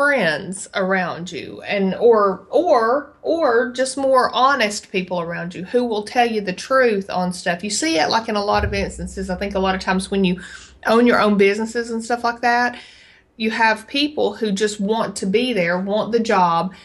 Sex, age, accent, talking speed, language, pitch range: female, 30-49, American, 205 wpm, English, 185-225 Hz